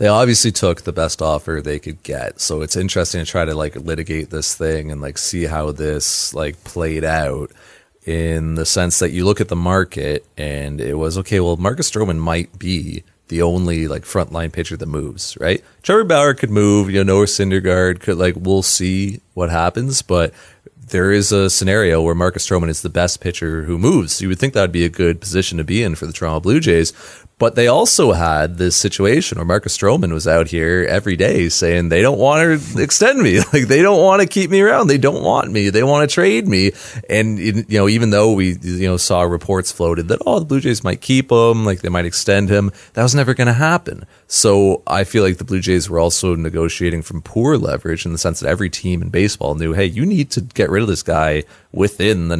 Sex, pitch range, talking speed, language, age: male, 85-105 Hz, 230 wpm, English, 30-49